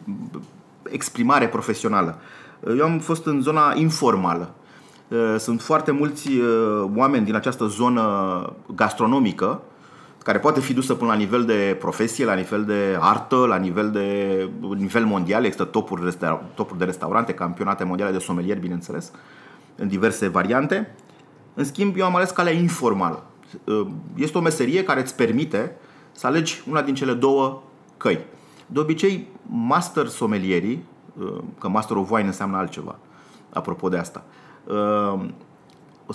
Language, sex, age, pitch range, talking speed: Romanian, male, 30-49, 95-150 Hz, 135 wpm